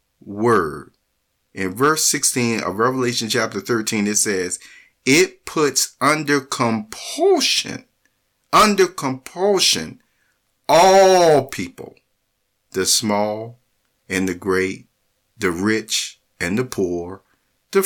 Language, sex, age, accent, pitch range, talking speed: English, male, 50-69, American, 110-155 Hz, 95 wpm